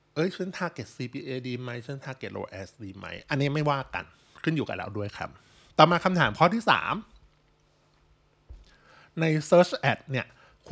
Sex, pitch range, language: male, 120-160 Hz, Thai